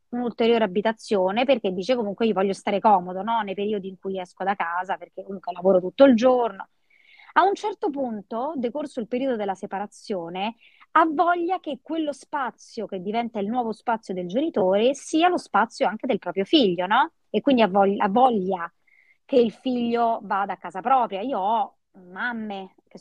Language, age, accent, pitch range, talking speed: Italian, 30-49, native, 195-270 Hz, 170 wpm